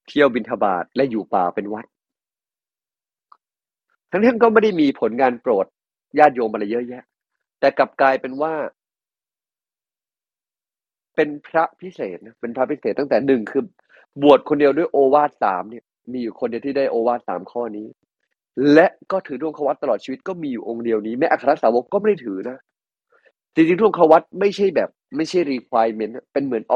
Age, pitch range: 30-49, 125-175 Hz